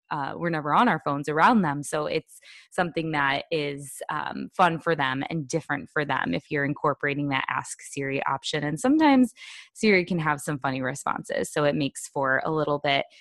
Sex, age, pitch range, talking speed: female, 20-39, 150-180 Hz, 195 wpm